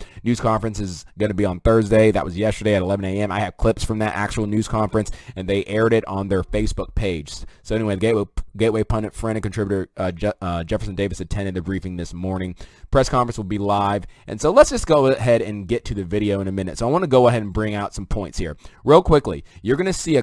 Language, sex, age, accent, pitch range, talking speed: English, male, 20-39, American, 100-125 Hz, 255 wpm